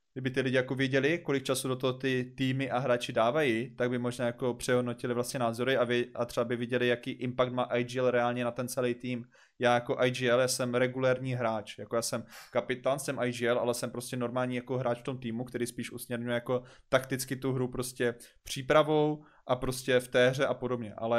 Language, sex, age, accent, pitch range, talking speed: Czech, male, 20-39, native, 125-135 Hz, 210 wpm